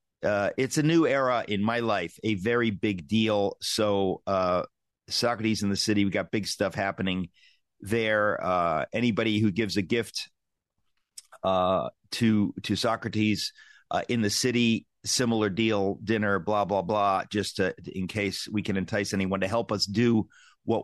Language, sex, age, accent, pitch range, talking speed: English, male, 50-69, American, 100-115 Hz, 165 wpm